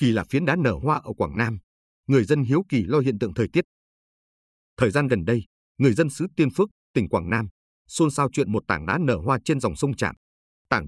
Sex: male